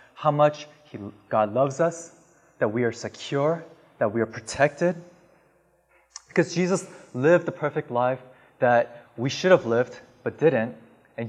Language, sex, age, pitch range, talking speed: English, male, 20-39, 125-170 Hz, 145 wpm